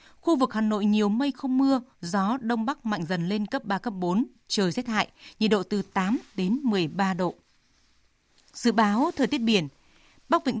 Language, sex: Vietnamese, female